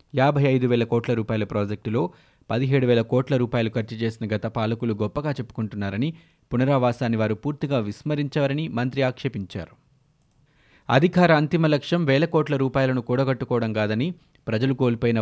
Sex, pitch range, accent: male, 115-145 Hz, native